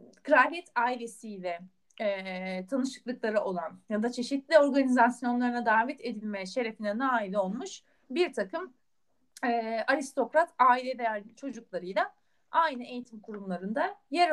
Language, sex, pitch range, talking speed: Turkish, female, 215-305 Hz, 105 wpm